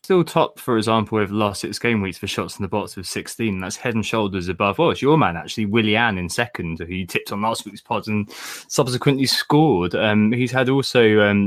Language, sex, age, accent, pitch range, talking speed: English, male, 20-39, British, 95-115 Hz, 240 wpm